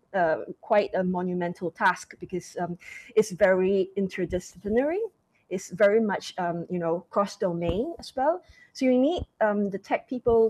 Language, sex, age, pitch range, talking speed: English, female, 20-39, 185-235 Hz, 155 wpm